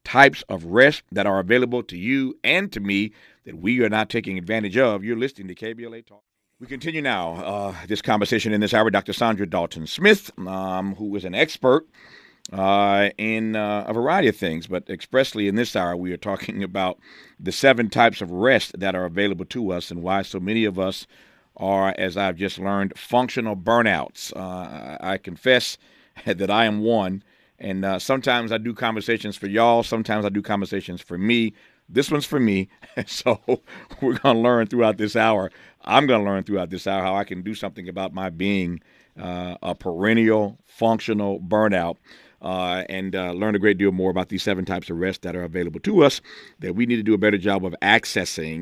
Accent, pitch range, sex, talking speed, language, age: American, 95-120 Hz, male, 195 wpm, English, 50-69